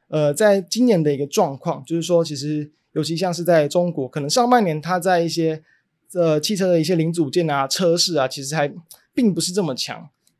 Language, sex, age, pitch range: Chinese, male, 20-39, 145-185 Hz